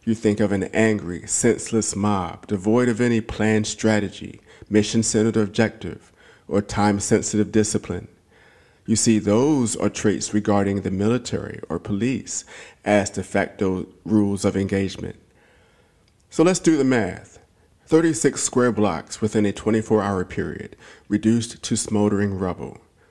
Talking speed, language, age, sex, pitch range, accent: 135 wpm, English, 50-69, male, 100-115 Hz, American